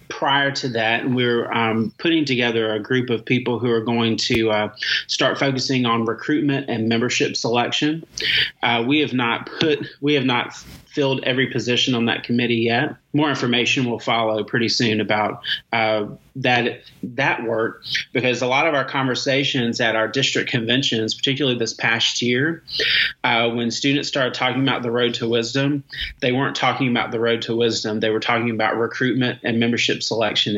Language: English